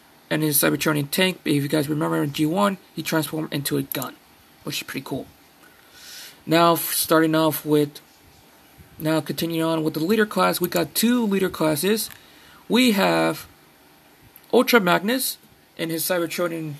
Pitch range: 155-190 Hz